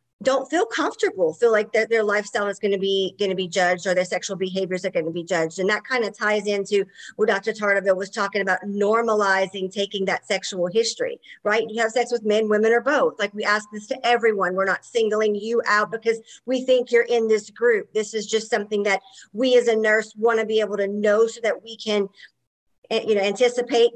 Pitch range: 200-245 Hz